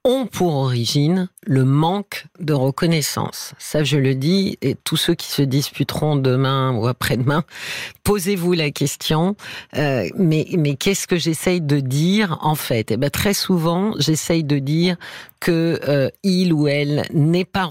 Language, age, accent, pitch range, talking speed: French, 50-69, French, 140-180 Hz, 160 wpm